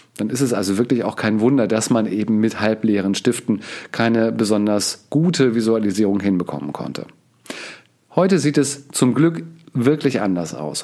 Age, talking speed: 40-59, 155 wpm